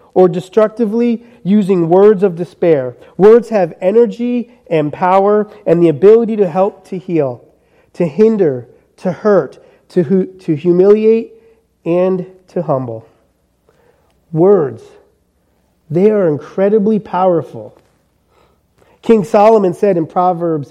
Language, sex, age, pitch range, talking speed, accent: English, male, 30-49, 170-215 Hz, 110 wpm, American